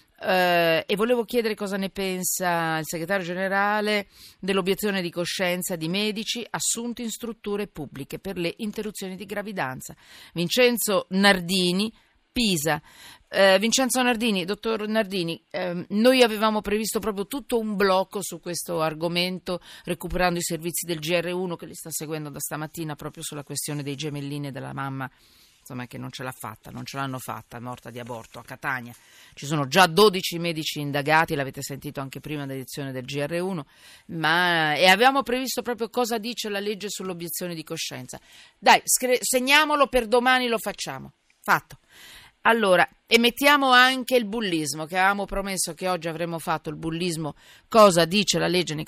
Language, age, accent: Italian, 40-59, native